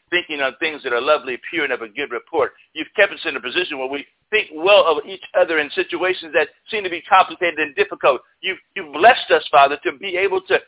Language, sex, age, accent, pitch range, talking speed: English, male, 60-79, American, 180-280 Hz, 245 wpm